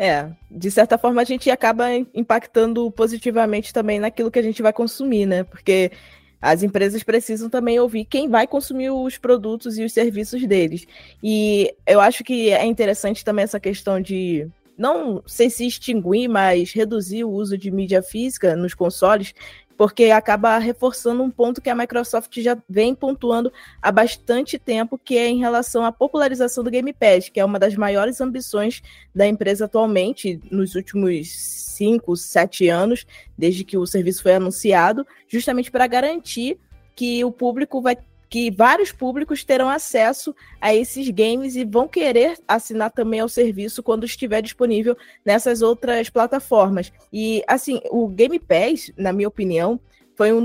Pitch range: 205-245 Hz